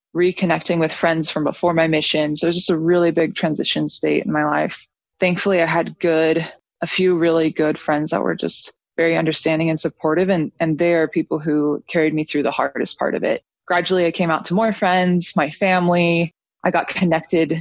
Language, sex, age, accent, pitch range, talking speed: English, female, 20-39, American, 160-185 Hz, 210 wpm